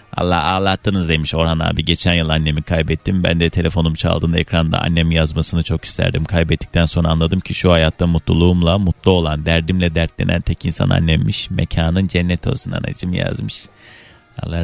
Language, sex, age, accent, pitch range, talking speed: Turkish, male, 30-49, native, 85-115 Hz, 155 wpm